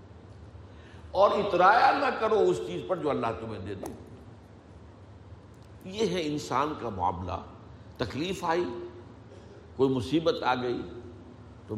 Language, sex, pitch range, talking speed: Urdu, male, 95-125 Hz, 120 wpm